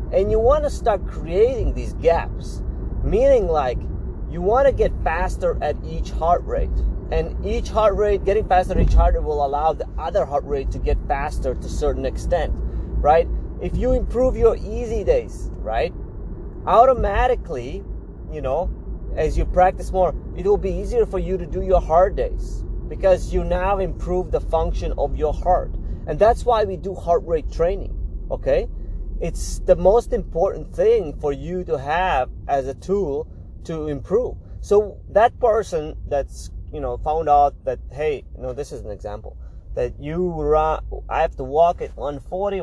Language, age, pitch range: English, 30-49, 165-255 Hz